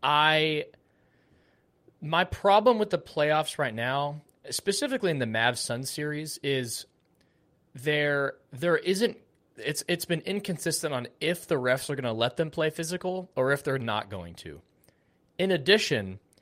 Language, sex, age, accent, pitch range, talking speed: English, male, 30-49, American, 125-175 Hz, 150 wpm